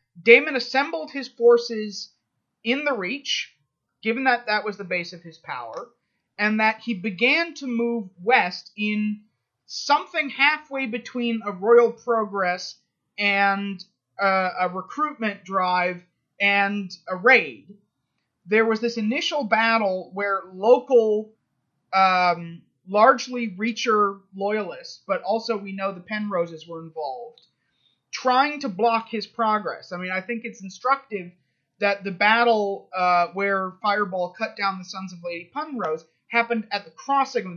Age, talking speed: 30-49, 135 wpm